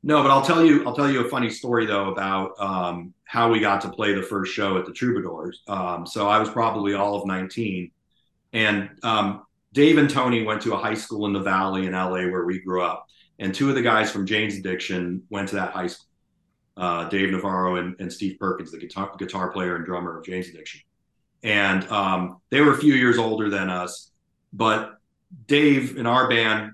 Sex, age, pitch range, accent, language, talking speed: male, 40-59, 95-115 Hz, American, English, 215 wpm